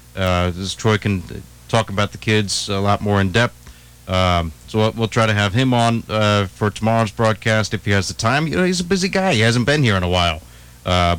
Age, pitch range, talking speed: 30-49, 95-125 Hz, 235 wpm